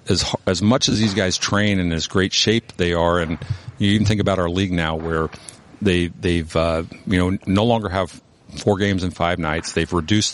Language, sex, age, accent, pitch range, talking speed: English, male, 50-69, American, 85-100 Hz, 215 wpm